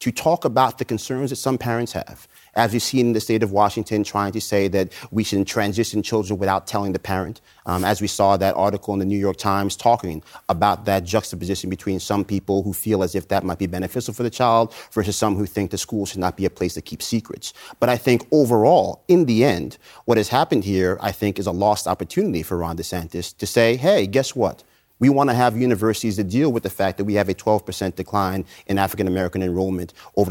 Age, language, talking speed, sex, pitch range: 30-49, English, 235 wpm, male, 95-120 Hz